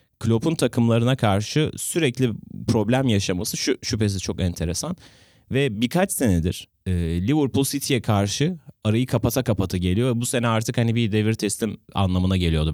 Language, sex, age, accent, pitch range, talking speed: Turkish, male, 30-49, native, 95-130 Hz, 135 wpm